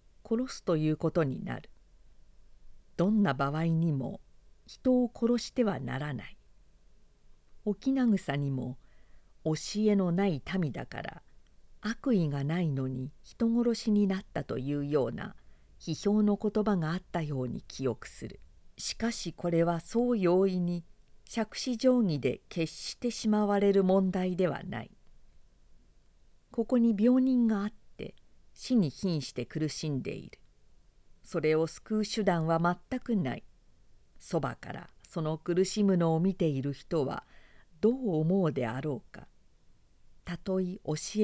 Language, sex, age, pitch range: Japanese, female, 50-69, 150-210 Hz